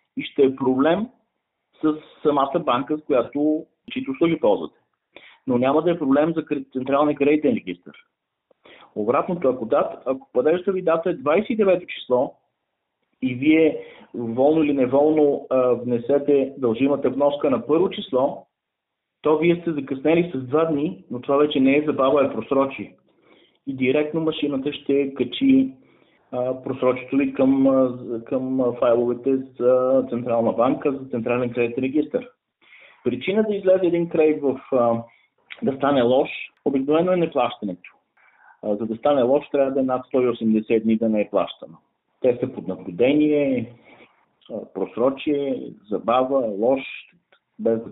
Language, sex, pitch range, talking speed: Bulgarian, male, 120-150 Hz, 140 wpm